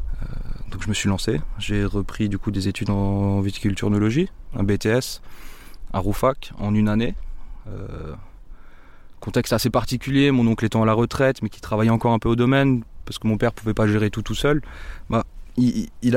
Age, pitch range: 20-39, 105-125 Hz